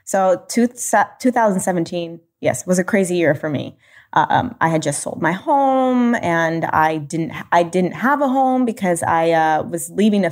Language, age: English, 20-39